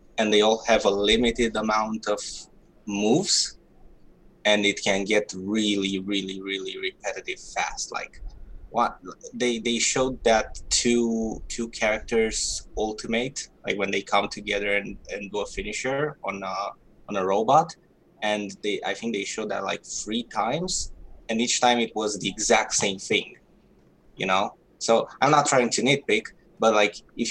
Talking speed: 160 wpm